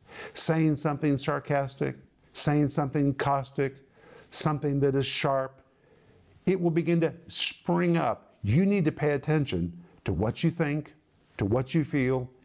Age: 50-69